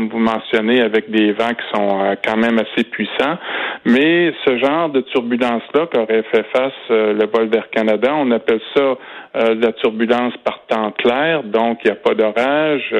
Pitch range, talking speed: 110-125 Hz, 185 wpm